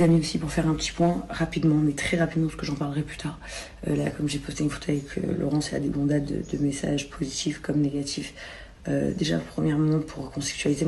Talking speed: 225 wpm